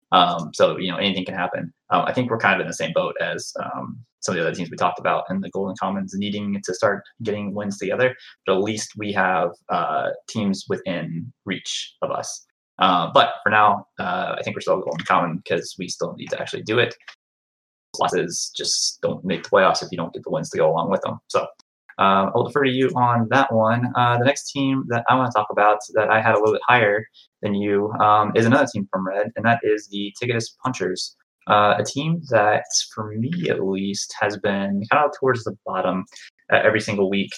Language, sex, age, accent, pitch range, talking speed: English, male, 20-39, American, 95-120 Hz, 230 wpm